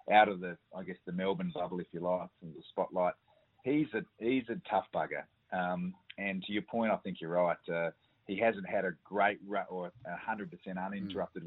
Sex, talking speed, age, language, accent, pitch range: male, 205 wpm, 30-49, English, Australian, 90-100 Hz